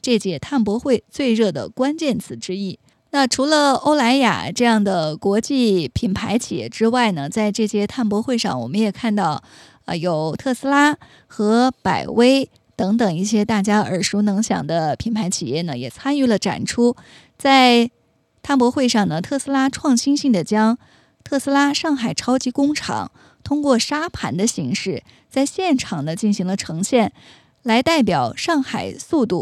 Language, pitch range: Chinese, 200-260 Hz